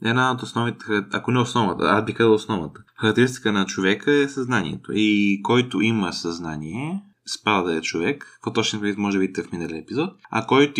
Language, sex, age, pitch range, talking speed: Bulgarian, male, 20-39, 110-135 Hz, 180 wpm